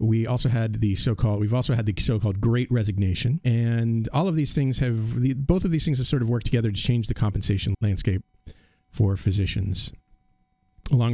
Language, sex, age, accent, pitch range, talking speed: English, male, 40-59, American, 100-130 Hz, 190 wpm